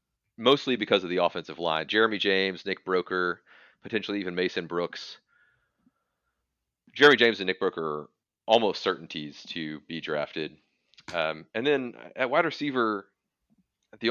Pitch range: 80-95 Hz